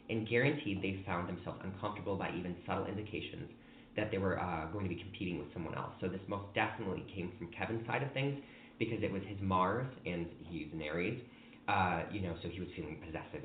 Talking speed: 215 wpm